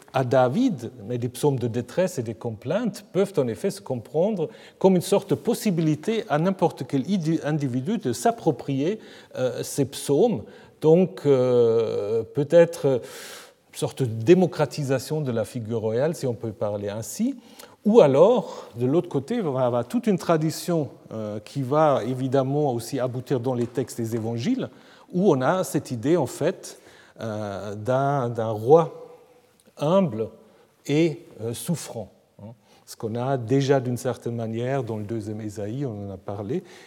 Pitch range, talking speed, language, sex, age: 120-165 Hz, 145 wpm, French, male, 40-59